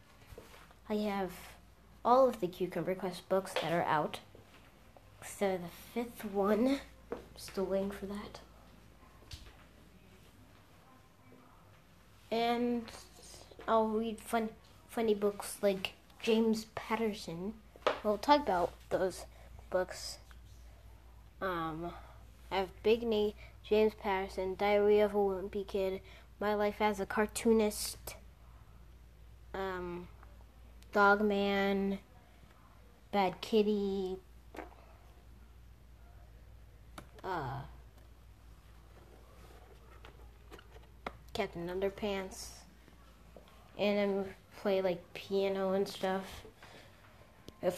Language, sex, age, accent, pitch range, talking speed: English, female, 20-39, American, 175-210 Hz, 85 wpm